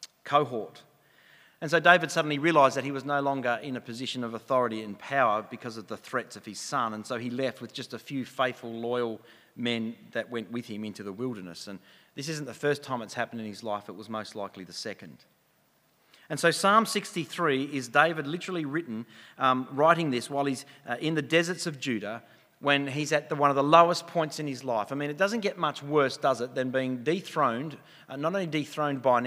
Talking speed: 225 wpm